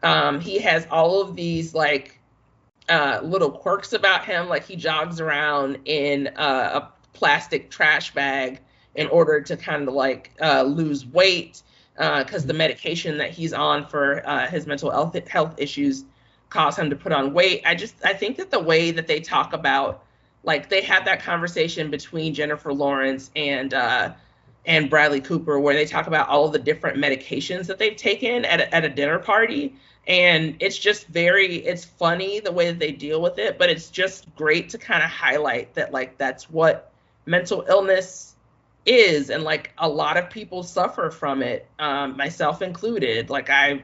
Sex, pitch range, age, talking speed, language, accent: female, 140-175 Hz, 30-49, 185 wpm, English, American